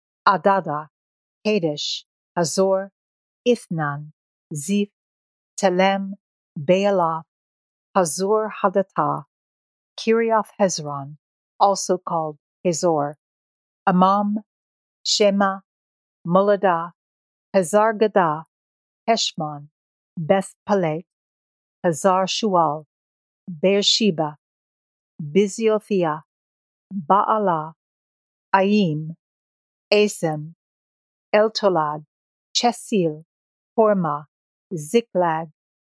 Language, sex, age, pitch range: English, female, 50-69, 150-200 Hz